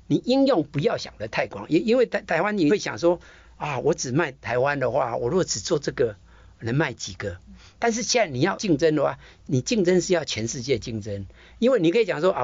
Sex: male